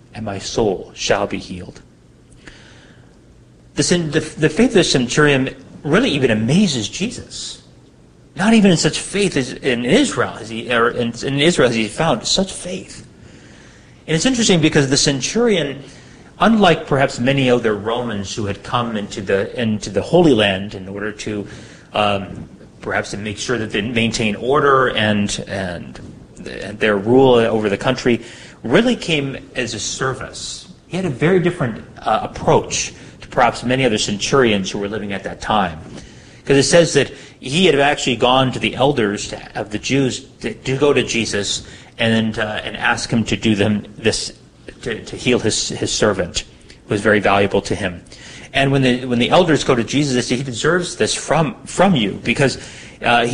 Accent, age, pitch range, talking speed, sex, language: American, 30-49, 110-140 Hz, 180 wpm, male, English